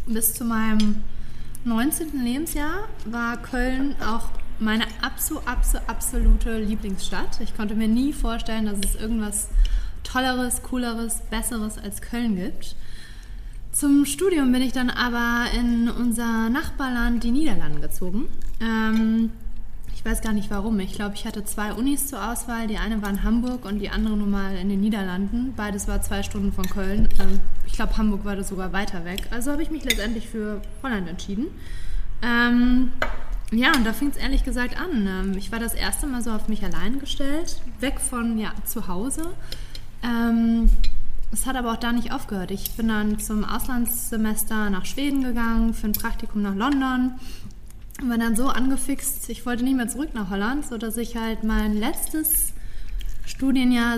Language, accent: German, German